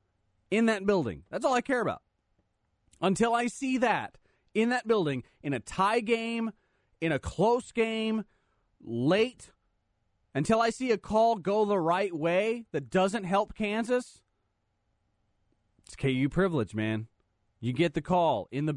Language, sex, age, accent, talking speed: English, male, 30-49, American, 150 wpm